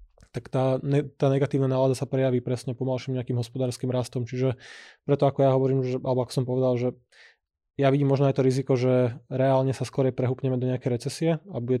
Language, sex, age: Slovak, male, 20-39